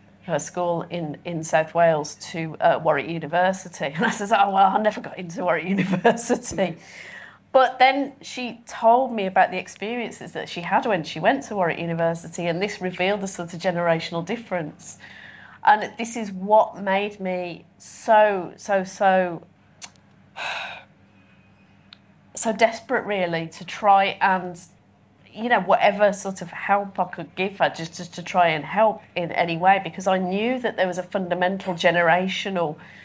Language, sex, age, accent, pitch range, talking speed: English, female, 30-49, British, 165-205 Hz, 160 wpm